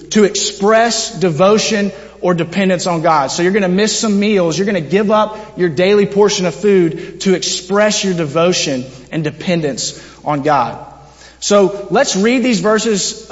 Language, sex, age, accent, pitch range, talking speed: English, male, 30-49, American, 145-195 Hz, 165 wpm